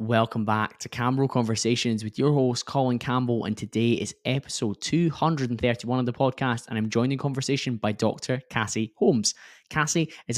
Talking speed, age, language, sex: 170 wpm, 10-29, English, male